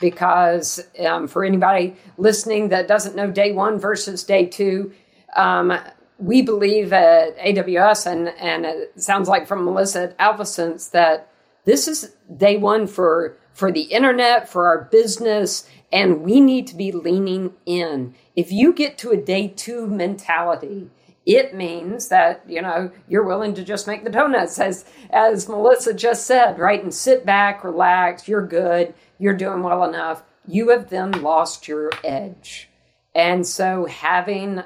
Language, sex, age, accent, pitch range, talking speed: English, female, 50-69, American, 175-210 Hz, 155 wpm